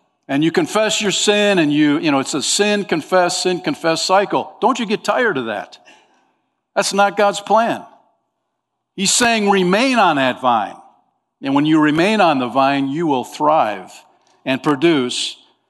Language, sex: English, male